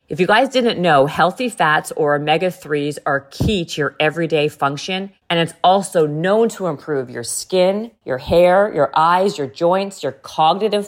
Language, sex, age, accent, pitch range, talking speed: English, female, 40-59, American, 155-200 Hz, 170 wpm